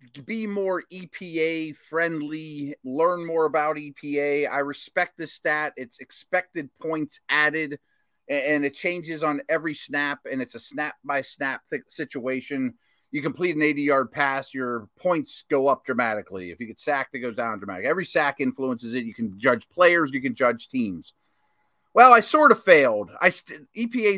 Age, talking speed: 30-49, 155 wpm